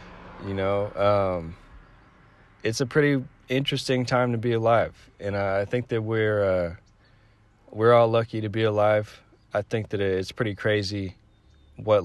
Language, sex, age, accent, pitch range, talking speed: English, male, 20-39, American, 95-115 Hz, 155 wpm